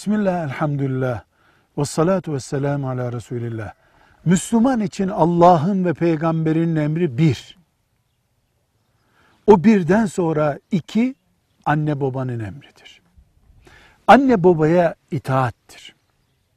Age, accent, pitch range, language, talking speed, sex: 60-79, native, 125-190 Hz, Turkish, 85 wpm, male